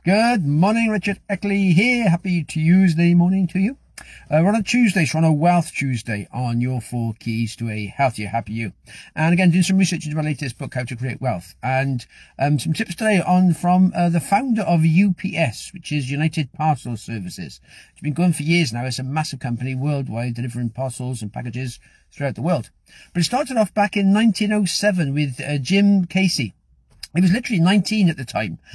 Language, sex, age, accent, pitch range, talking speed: English, male, 50-69, British, 135-185 Hz, 200 wpm